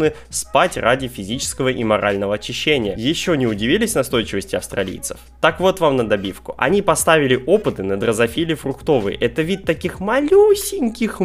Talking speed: 140 wpm